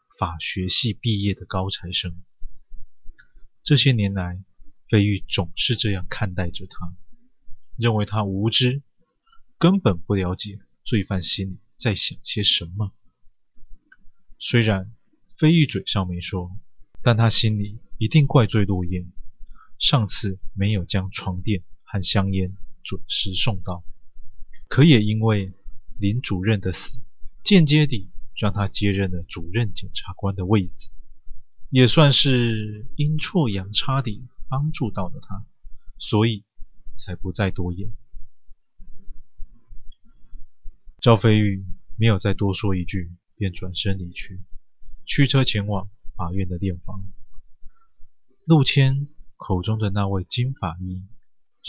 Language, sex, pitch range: Chinese, male, 95-115 Hz